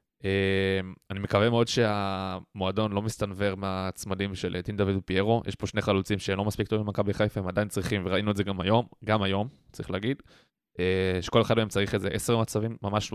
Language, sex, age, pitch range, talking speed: Hebrew, male, 20-39, 100-115 Hz, 185 wpm